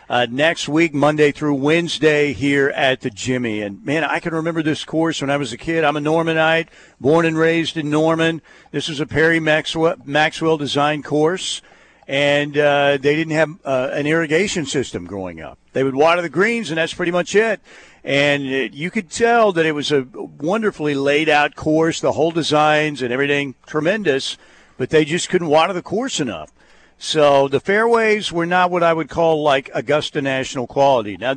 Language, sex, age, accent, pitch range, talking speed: English, male, 50-69, American, 130-160 Hz, 185 wpm